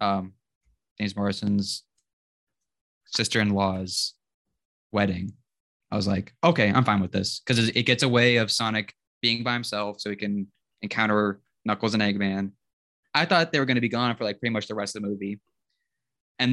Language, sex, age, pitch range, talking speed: English, male, 20-39, 100-120 Hz, 175 wpm